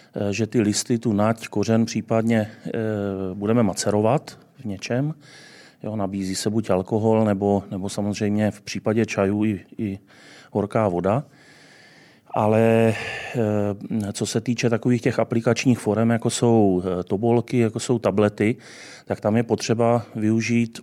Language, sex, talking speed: Czech, male, 130 wpm